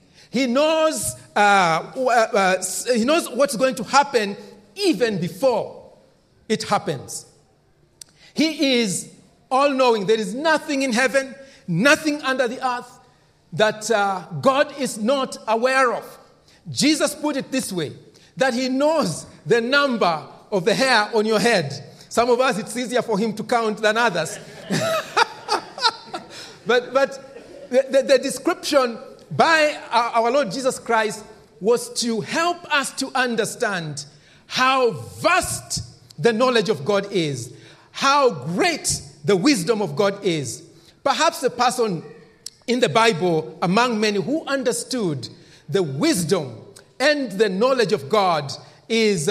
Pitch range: 185-265 Hz